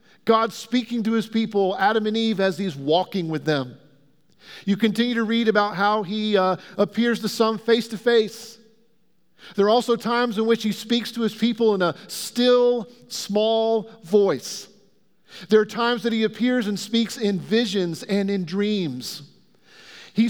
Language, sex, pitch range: English, male, 200-235 Hz